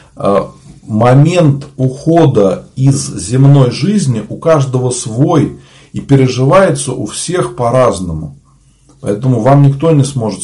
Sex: male